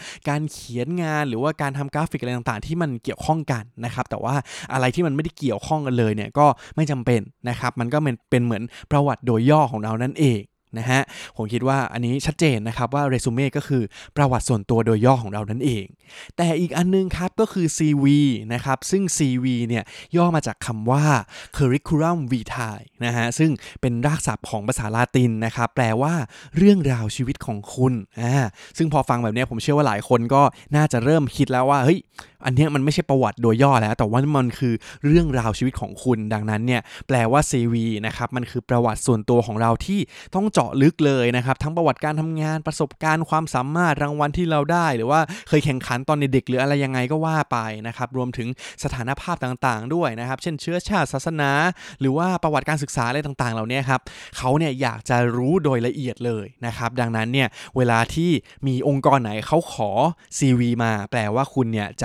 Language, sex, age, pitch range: Thai, male, 20-39, 120-150 Hz